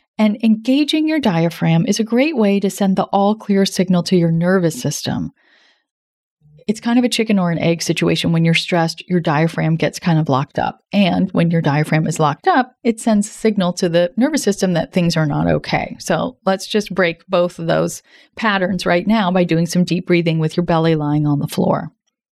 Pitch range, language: 170-225 Hz, English